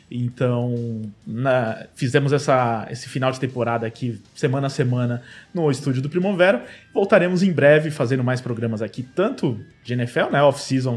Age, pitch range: 20-39, 125-160 Hz